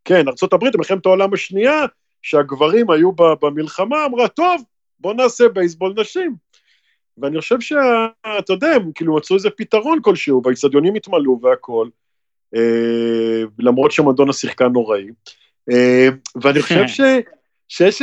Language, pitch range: Hebrew, 150-230 Hz